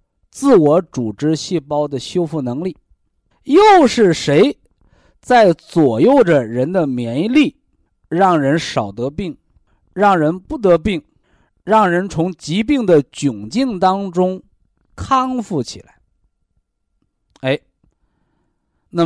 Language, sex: Chinese, male